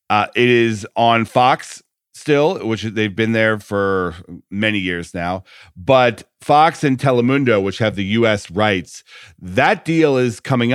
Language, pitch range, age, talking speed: English, 100-125 Hz, 40-59, 150 wpm